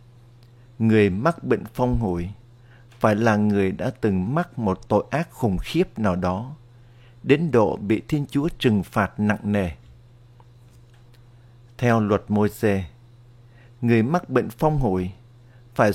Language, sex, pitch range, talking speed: Vietnamese, male, 110-130 Hz, 140 wpm